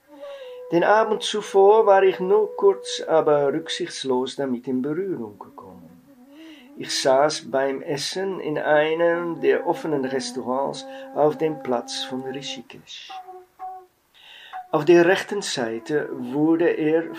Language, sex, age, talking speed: German, male, 50-69, 115 wpm